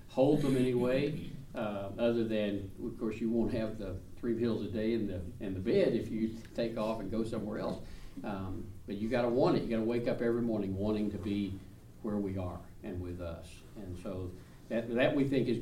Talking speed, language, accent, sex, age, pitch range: 220 wpm, English, American, male, 60-79, 100-120 Hz